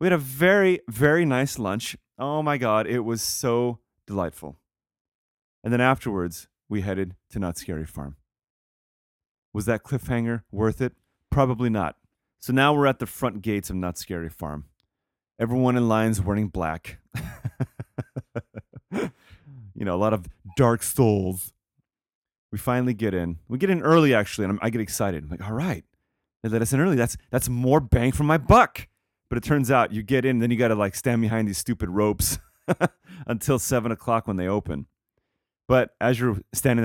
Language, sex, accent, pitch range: English, male, American, 95-125 Hz